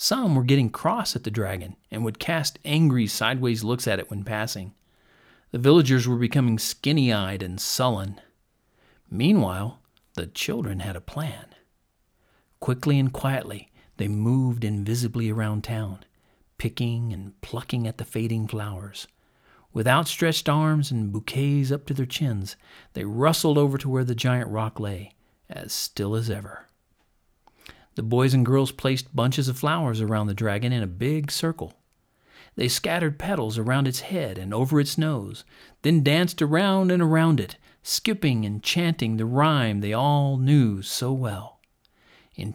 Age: 50-69